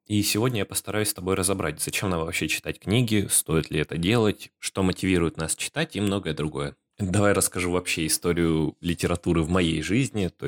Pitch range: 80-100 Hz